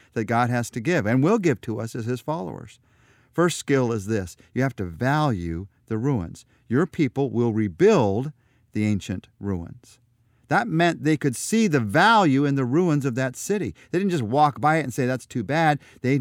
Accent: American